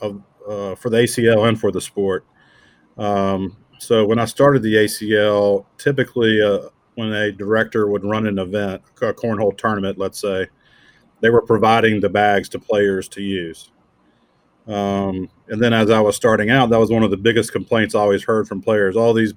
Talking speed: 190 wpm